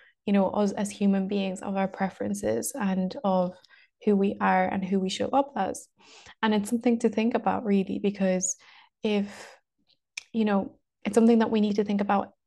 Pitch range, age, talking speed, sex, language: 195-215 Hz, 20-39, 190 wpm, female, English